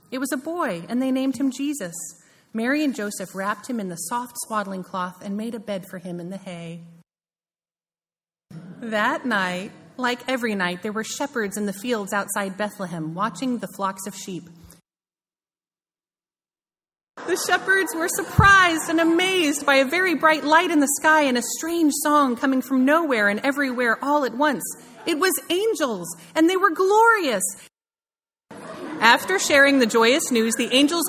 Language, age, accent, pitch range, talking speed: English, 30-49, American, 205-315 Hz, 165 wpm